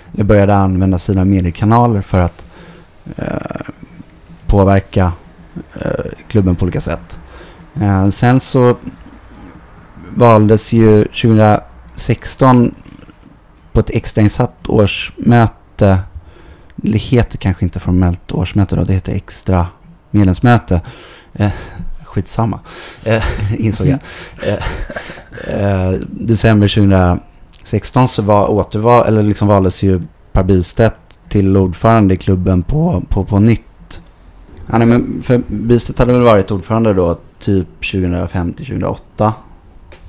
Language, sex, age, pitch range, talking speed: Swedish, male, 30-49, 90-110 Hz, 110 wpm